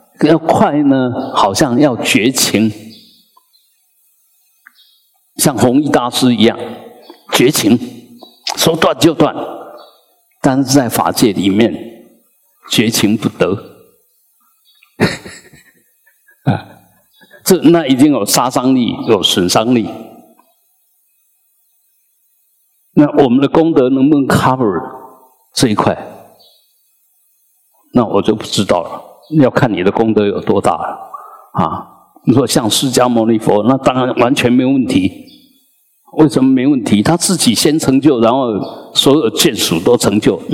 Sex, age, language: male, 50-69, Chinese